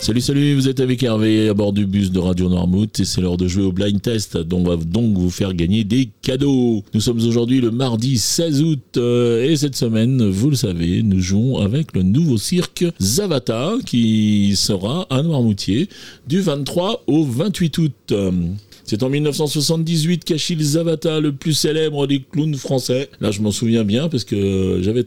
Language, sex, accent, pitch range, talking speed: French, male, French, 100-150 Hz, 185 wpm